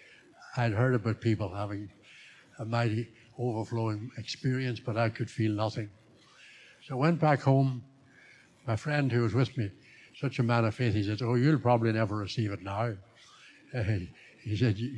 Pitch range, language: 110-130 Hz, English